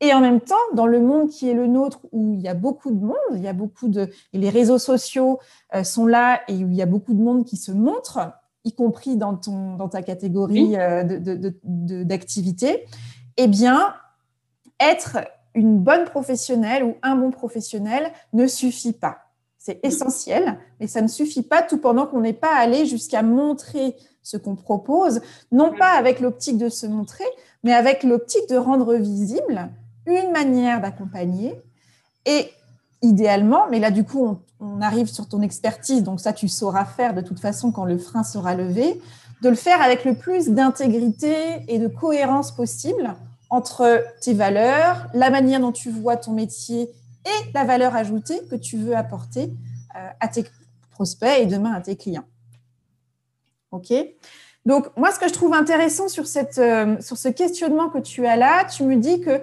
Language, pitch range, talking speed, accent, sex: French, 200-265 Hz, 185 wpm, French, female